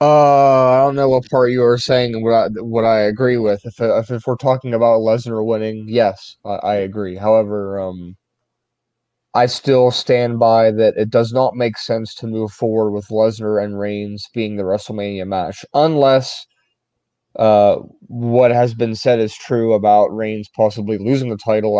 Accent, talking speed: American, 175 wpm